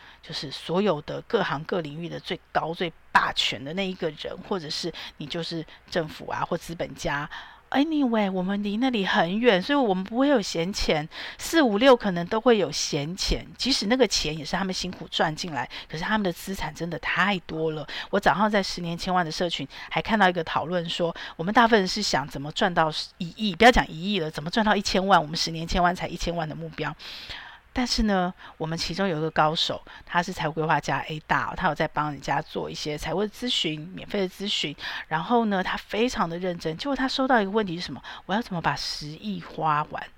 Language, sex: Chinese, female